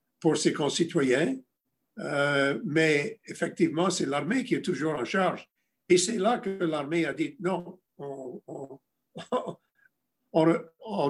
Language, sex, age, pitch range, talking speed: English, male, 60-79, 150-190 Hz, 120 wpm